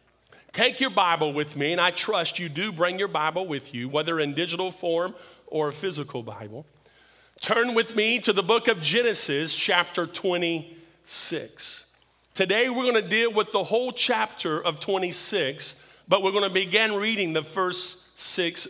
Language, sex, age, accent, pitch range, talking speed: English, male, 40-59, American, 160-230 Hz, 170 wpm